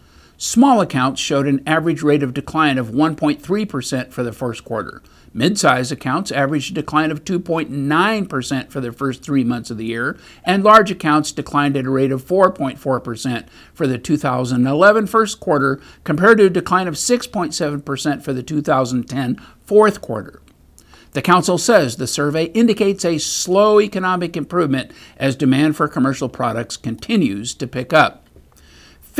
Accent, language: American, English